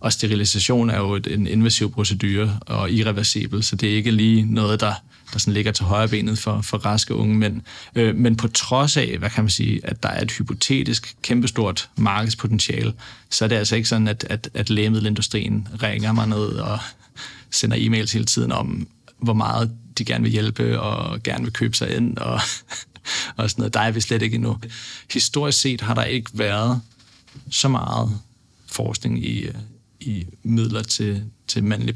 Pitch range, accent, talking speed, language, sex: 105-115 Hz, native, 185 wpm, Danish, male